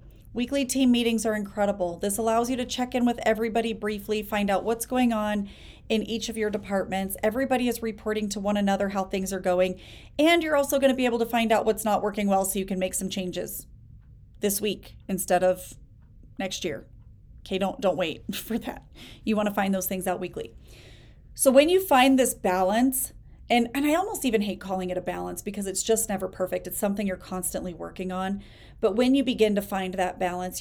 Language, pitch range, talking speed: English, 185-230 Hz, 210 wpm